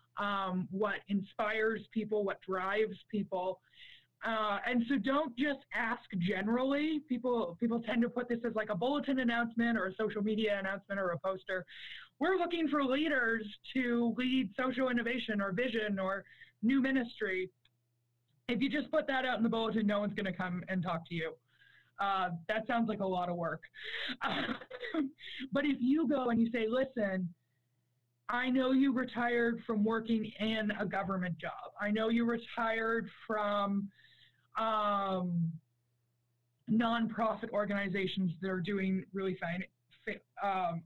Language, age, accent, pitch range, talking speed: English, 20-39, American, 190-235 Hz, 155 wpm